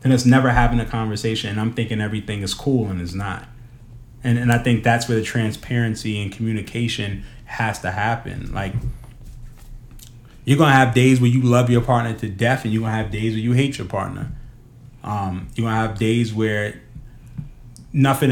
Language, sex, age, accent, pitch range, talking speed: English, male, 30-49, American, 105-125 Hz, 185 wpm